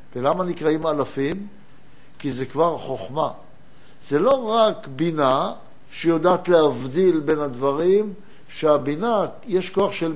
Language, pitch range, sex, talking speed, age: Hebrew, 150-200 Hz, male, 110 wpm, 60-79